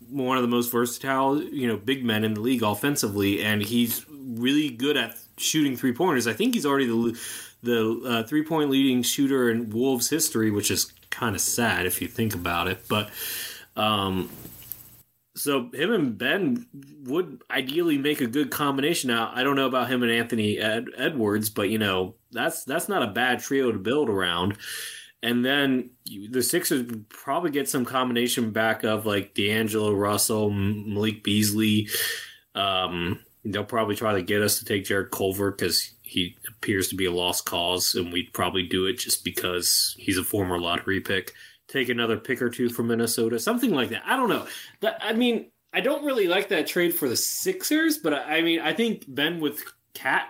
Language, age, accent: English, 20-39, American